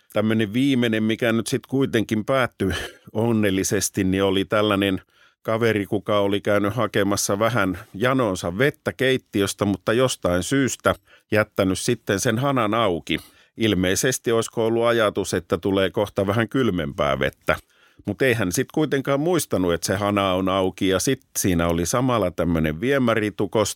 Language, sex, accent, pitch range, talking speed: Finnish, male, native, 95-125 Hz, 140 wpm